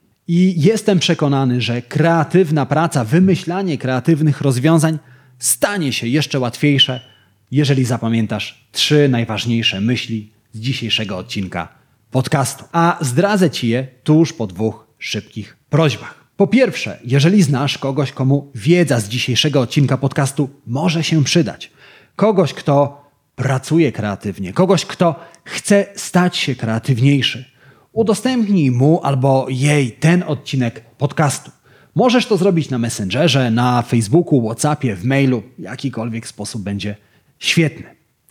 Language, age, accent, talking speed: Polish, 30-49, native, 120 wpm